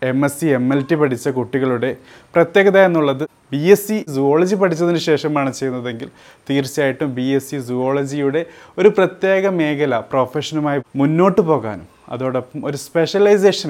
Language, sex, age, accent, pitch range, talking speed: Malayalam, male, 30-49, native, 125-155 Hz, 135 wpm